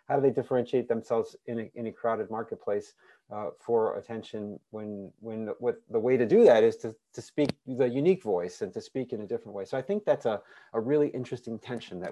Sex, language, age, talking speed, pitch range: male, English, 40-59, 235 wpm, 110-145 Hz